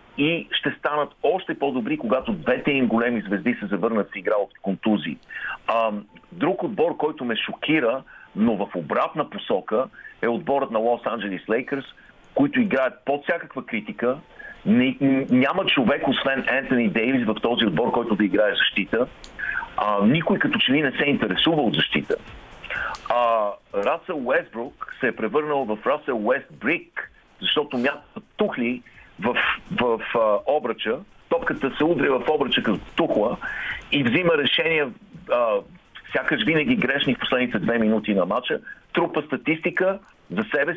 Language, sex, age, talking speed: Bulgarian, male, 50-69, 145 wpm